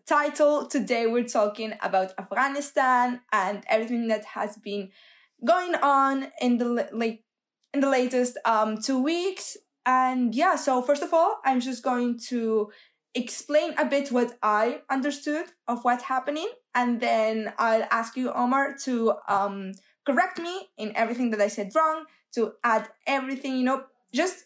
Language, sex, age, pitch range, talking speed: English, female, 20-39, 215-275 Hz, 155 wpm